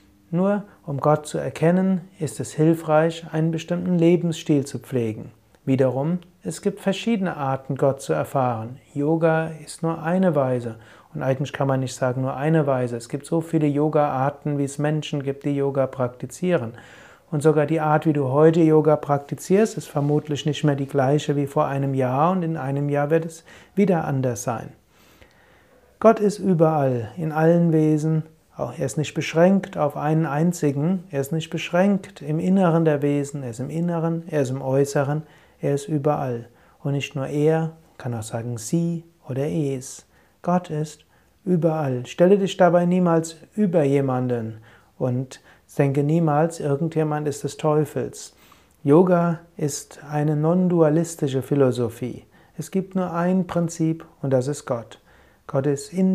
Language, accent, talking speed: German, German, 160 wpm